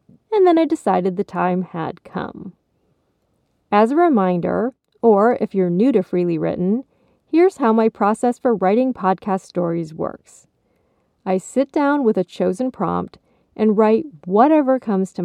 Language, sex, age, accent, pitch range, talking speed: English, female, 40-59, American, 180-235 Hz, 155 wpm